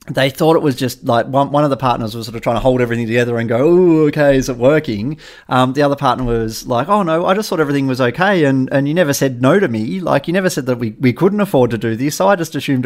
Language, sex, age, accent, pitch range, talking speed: English, male, 30-49, Australian, 115-135 Hz, 300 wpm